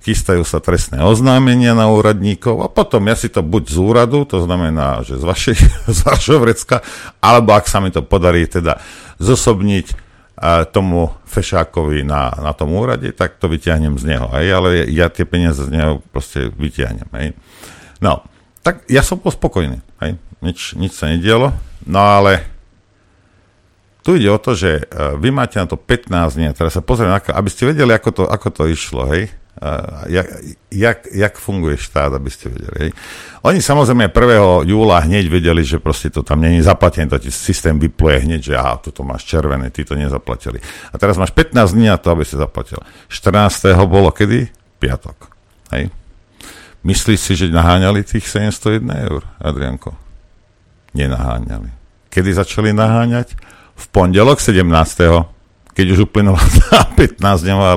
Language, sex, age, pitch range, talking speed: Slovak, male, 50-69, 80-105 Hz, 160 wpm